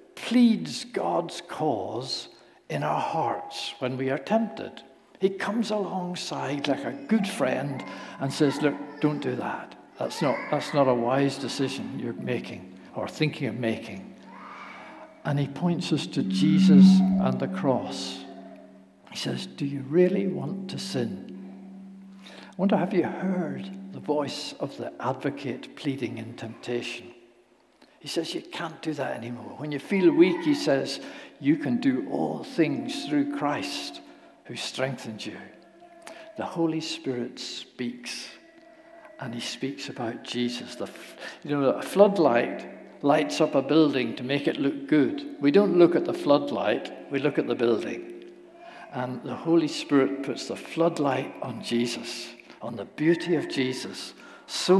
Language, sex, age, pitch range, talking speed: English, male, 60-79, 125-195 Hz, 150 wpm